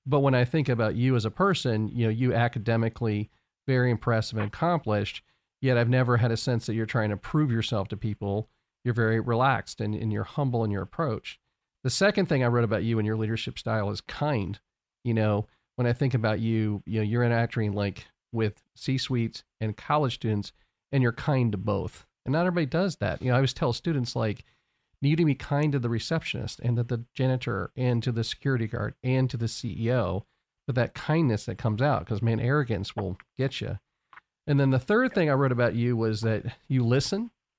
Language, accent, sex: English, American, male